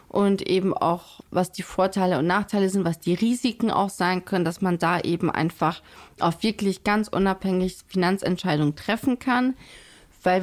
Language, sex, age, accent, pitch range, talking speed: German, female, 30-49, German, 180-205 Hz, 160 wpm